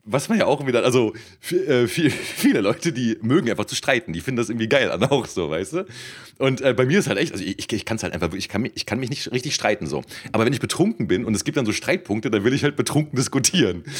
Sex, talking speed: male, 265 wpm